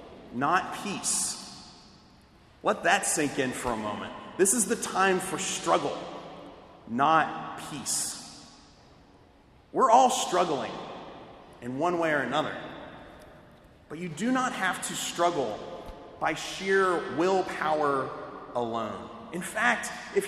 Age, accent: 30-49, American